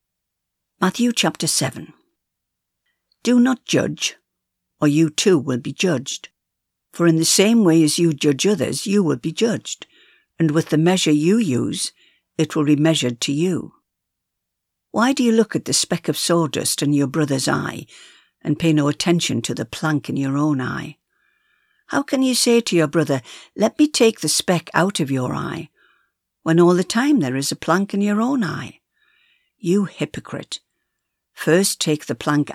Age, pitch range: 60-79, 145-205 Hz